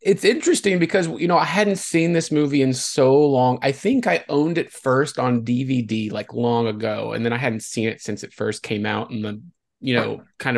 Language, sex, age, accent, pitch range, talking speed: English, male, 30-49, American, 125-165 Hz, 225 wpm